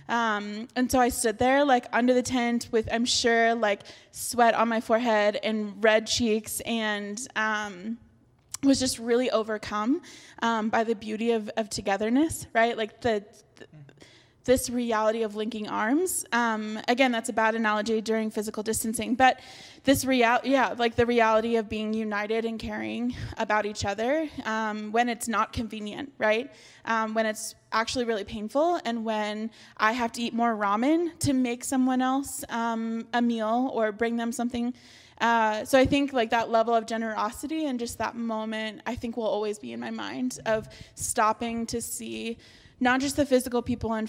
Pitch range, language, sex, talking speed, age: 220-245 Hz, English, female, 175 wpm, 20-39